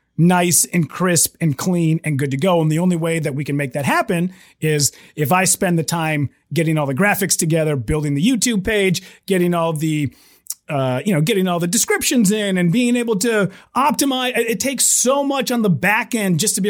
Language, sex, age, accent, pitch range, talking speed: English, male, 30-49, American, 160-220 Hz, 220 wpm